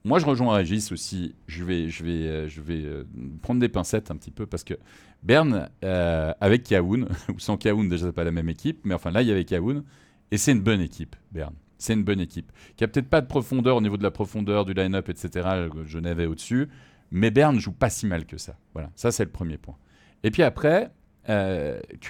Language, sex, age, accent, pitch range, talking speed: French, male, 40-59, French, 85-130 Hz, 230 wpm